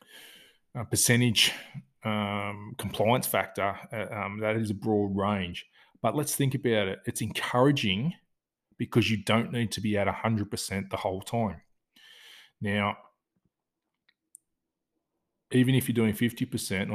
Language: English